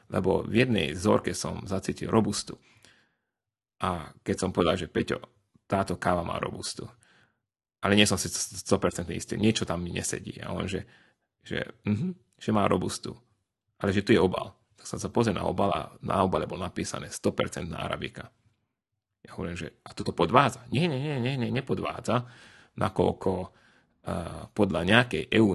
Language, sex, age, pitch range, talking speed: Slovak, male, 30-49, 95-120 Hz, 165 wpm